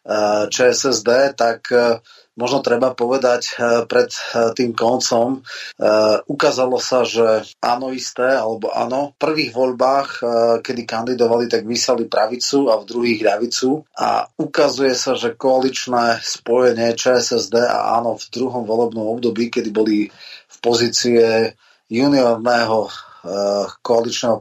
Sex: male